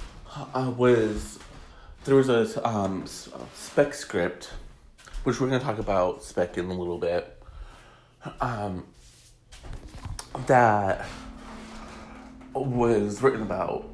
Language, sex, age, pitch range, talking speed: English, male, 30-49, 95-130 Hz, 100 wpm